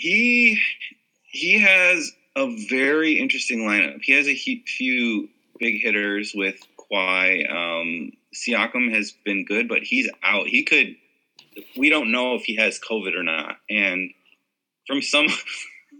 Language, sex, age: English, male, 30-49